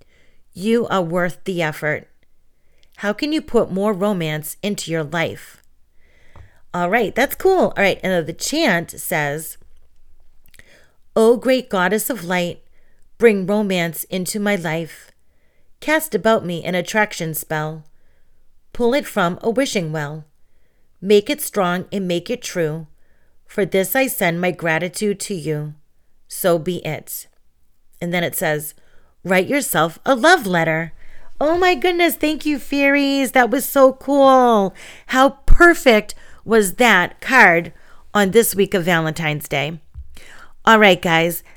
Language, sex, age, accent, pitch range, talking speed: English, female, 30-49, American, 165-230 Hz, 140 wpm